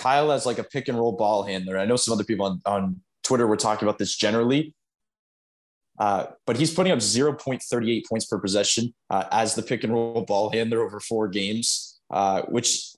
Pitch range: 105-130 Hz